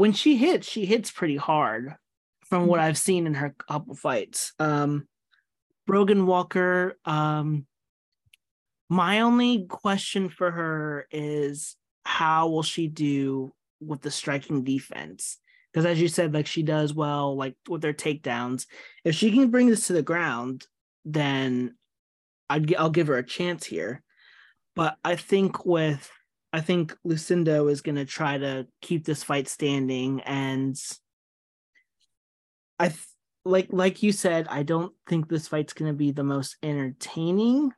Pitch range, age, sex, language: 135-175 Hz, 30-49, male, English